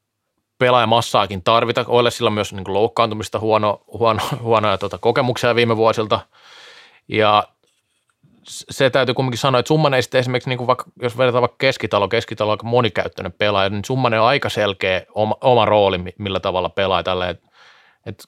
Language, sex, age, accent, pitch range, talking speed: Finnish, male, 30-49, native, 100-120 Hz, 165 wpm